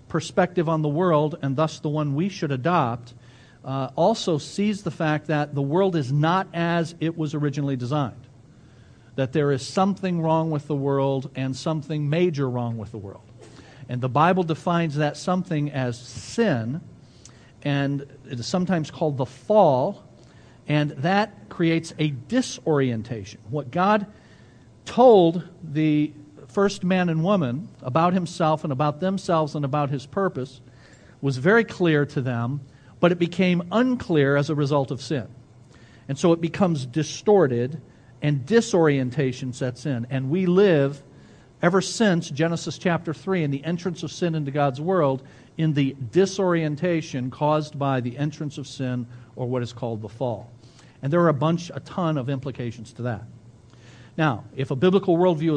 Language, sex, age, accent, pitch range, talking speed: English, male, 50-69, American, 130-170 Hz, 160 wpm